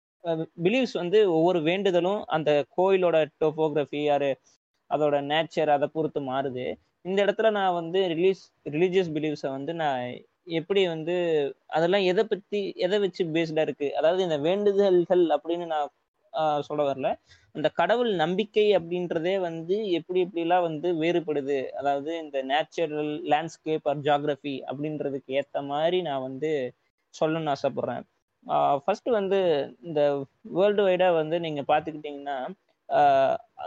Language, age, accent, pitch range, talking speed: Tamil, 20-39, native, 145-185 Hz, 120 wpm